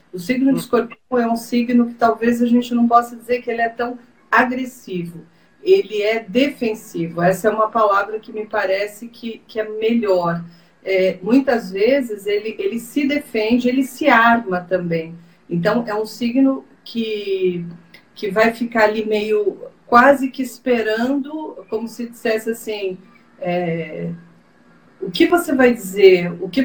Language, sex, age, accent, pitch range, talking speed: Portuguese, female, 40-59, Brazilian, 195-240 Hz, 150 wpm